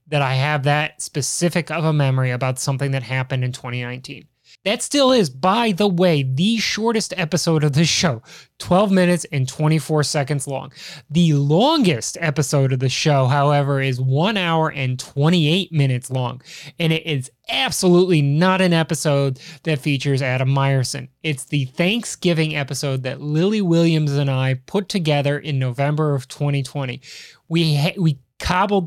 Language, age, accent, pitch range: English, 20-39, American, 140-175 Hz